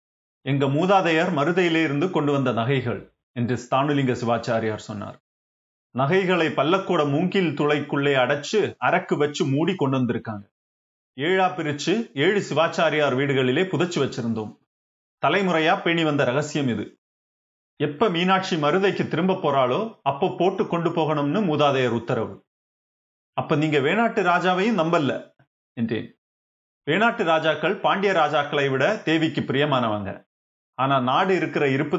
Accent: native